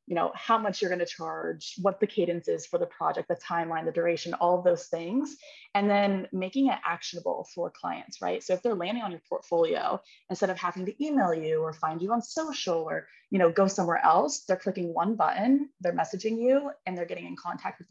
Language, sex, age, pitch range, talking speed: English, female, 20-39, 175-235 Hz, 230 wpm